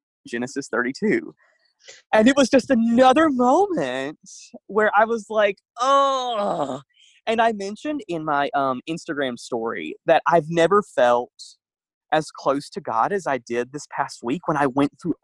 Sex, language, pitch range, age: male, English, 125-185 Hz, 20-39